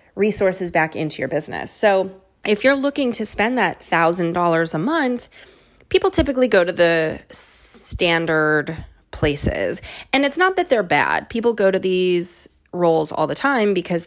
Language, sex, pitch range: English, female, 150-215 Hz